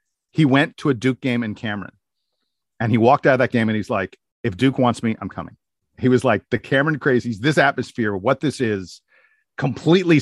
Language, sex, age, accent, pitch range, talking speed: English, male, 40-59, American, 115-135 Hz, 210 wpm